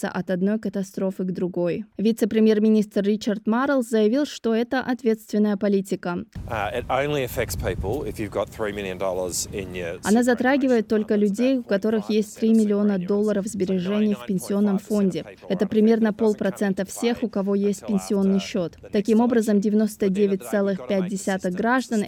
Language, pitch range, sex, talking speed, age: Russian, 190-220 Hz, female, 110 wpm, 20-39